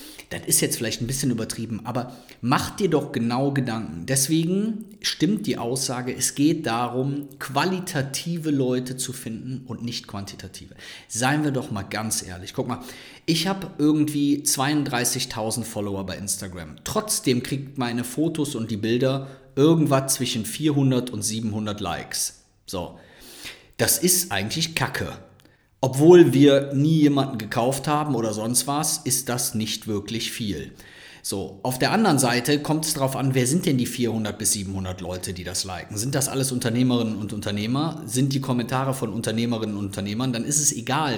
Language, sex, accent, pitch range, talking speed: German, male, German, 115-150 Hz, 160 wpm